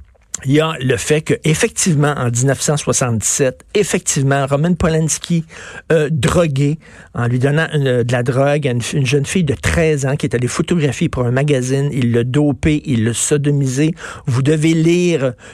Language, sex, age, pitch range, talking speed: French, male, 50-69, 130-160 Hz, 165 wpm